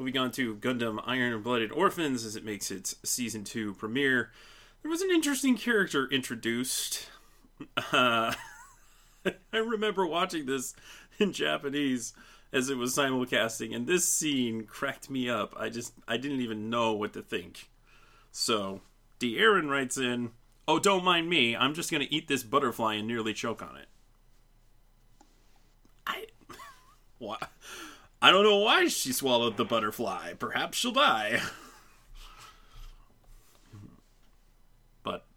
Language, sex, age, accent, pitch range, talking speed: English, male, 30-49, American, 115-140 Hz, 135 wpm